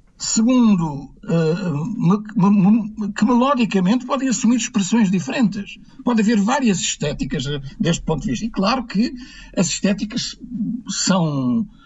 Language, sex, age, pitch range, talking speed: Portuguese, male, 60-79, 180-230 Hz, 105 wpm